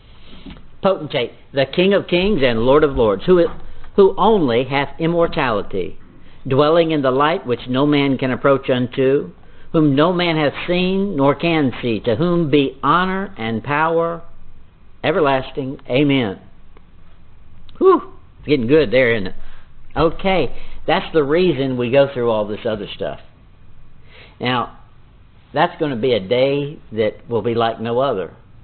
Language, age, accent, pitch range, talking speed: English, 60-79, American, 110-160 Hz, 150 wpm